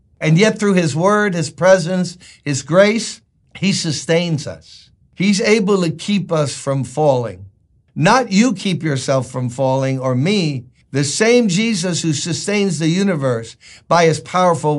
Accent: American